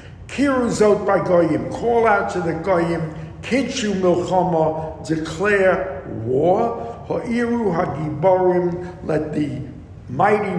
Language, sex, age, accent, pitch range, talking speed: English, male, 60-79, American, 160-185 Hz, 95 wpm